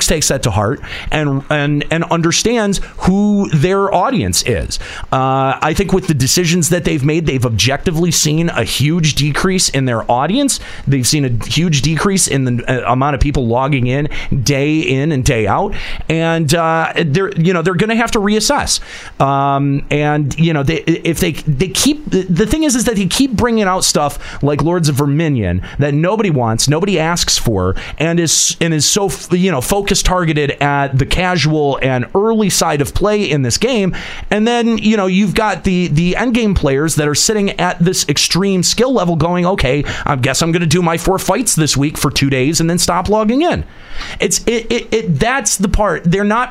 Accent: American